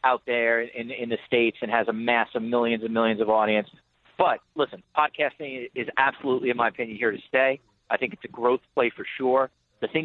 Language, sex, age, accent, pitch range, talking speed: English, male, 40-59, American, 115-135 Hz, 220 wpm